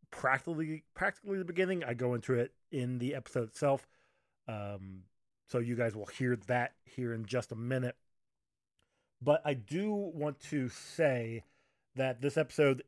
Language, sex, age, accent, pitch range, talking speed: English, male, 20-39, American, 115-145 Hz, 155 wpm